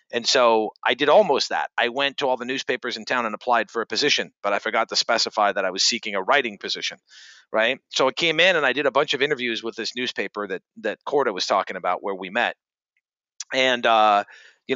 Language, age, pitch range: English, 40-59, 110-160 Hz